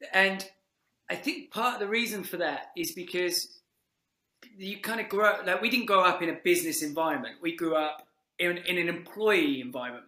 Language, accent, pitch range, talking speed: English, British, 165-205 Hz, 190 wpm